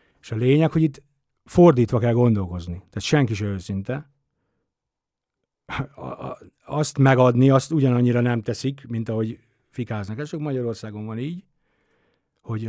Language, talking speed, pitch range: Hungarian, 135 wpm, 115-145 Hz